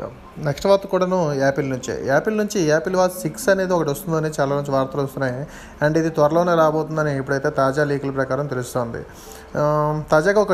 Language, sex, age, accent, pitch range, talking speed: Telugu, male, 30-49, native, 150-175 Hz, 160 wpm